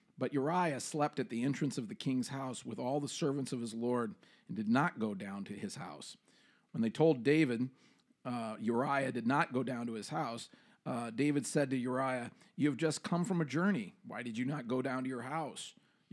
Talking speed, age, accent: 220 wpm, 40-59, American